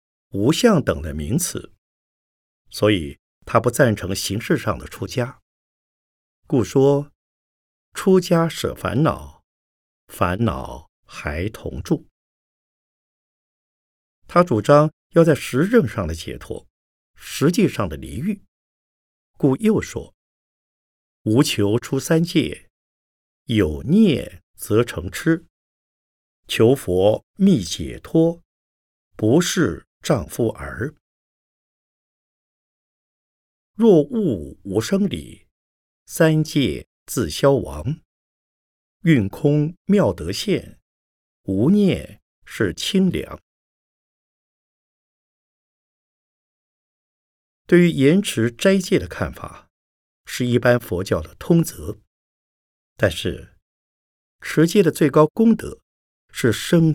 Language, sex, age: Chinese, male, 50-69